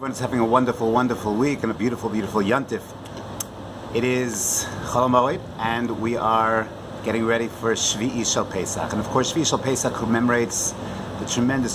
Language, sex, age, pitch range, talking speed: English, male, 30-49, 105-125 Hz, 170 wpm